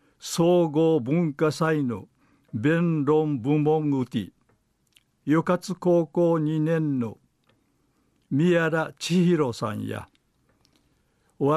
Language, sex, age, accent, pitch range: Japanese, male, 60-79, native, 130-160 Hz